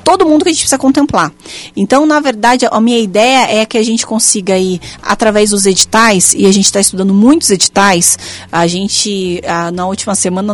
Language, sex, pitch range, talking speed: Portuguese, female, 195-245 Hz, 200 wpm